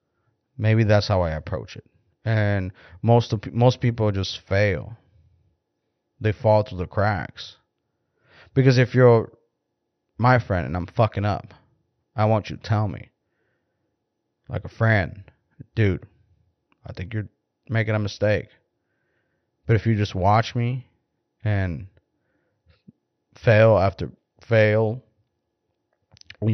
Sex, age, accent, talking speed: male, 30-49, American, 120 wpm